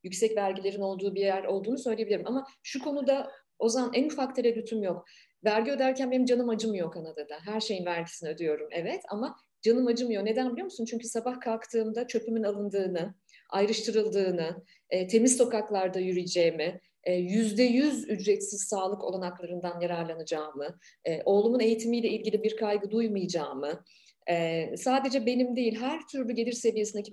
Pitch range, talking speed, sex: 185-245 Hz, 130 wpm, female